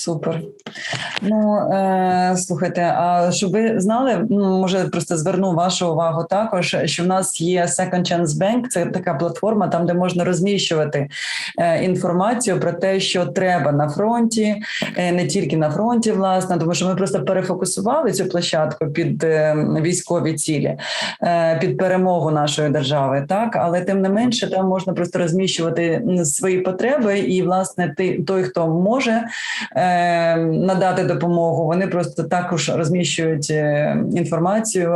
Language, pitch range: Ukrainian, 165-190 Hz